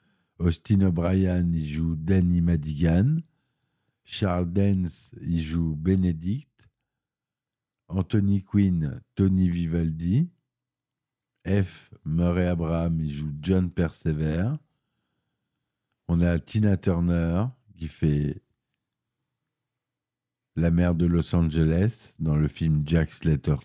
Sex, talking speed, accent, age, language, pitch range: male, 100 wpm, French, 50-69, French, 80-105 Hz